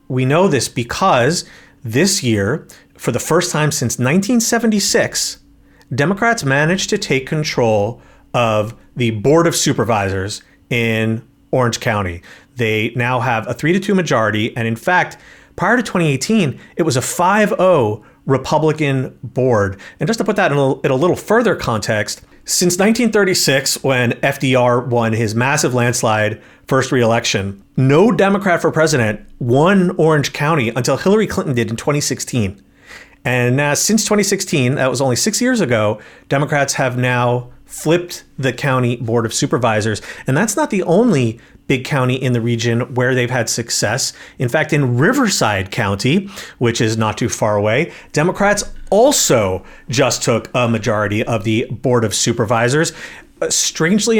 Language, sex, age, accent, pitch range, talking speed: English, male, 40-59, American, 115-165 Hz, 150 wpm